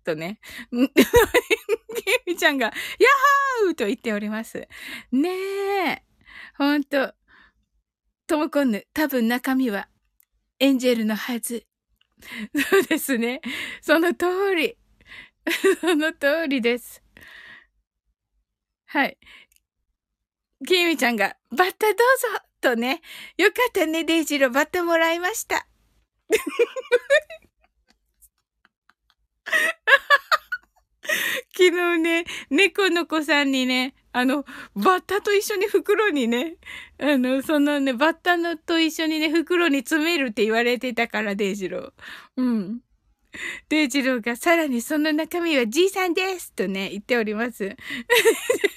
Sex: female